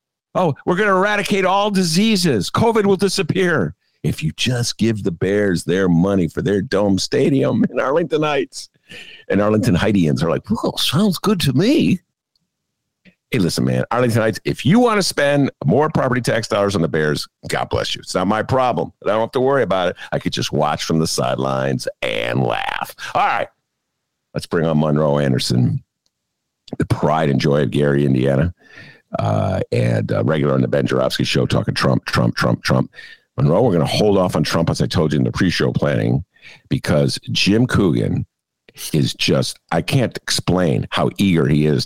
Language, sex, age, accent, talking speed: English, male, 50-69, American, 185 wpm